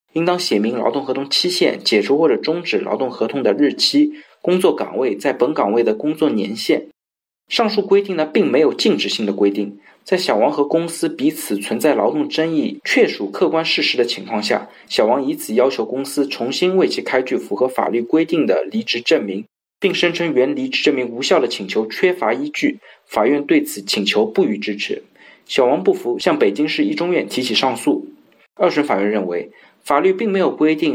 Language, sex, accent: Chinese, male, native